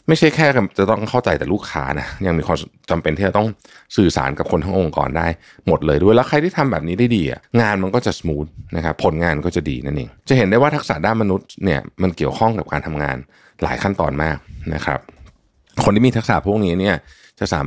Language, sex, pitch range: Thai, male, 80-110 Hz